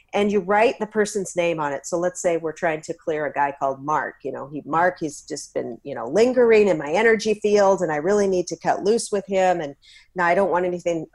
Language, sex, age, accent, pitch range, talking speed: English, female, 40-59, American, 170-195 Hz, 260 wpm